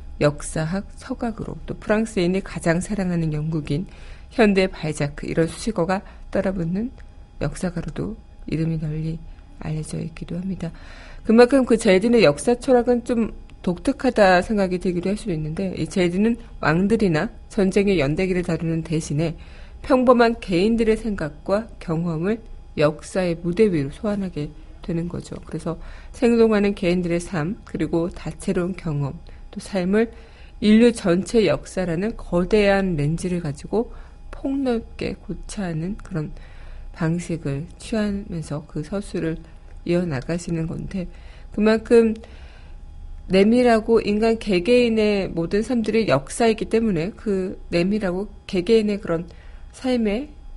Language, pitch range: Korean, 165-215 Hz